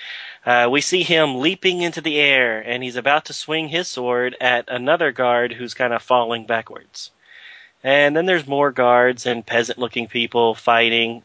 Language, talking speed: English, 170 wpm